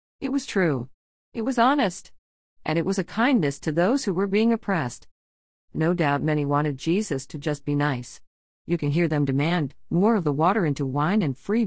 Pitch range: 140-195 Hz